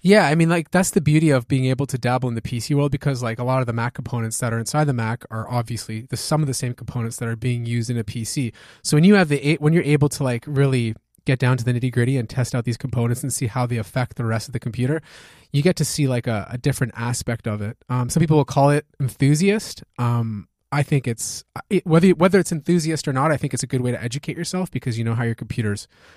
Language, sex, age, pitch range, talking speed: English, male, 20-39, 120-150 Hz, 275 wpm